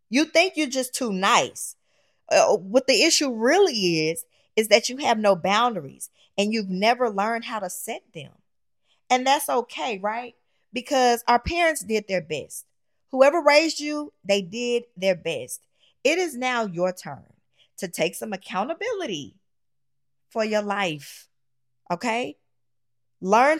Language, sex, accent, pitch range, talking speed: English, female, American, 180-245 Hz, 145 wpm